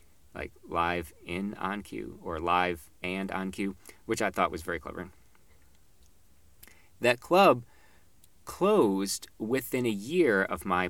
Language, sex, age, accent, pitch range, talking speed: English, male, 40-59, American, 85-110 Hz, 130 wpm